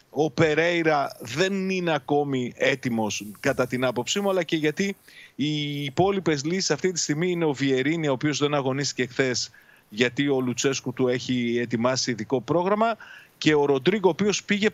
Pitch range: 130-175 Hz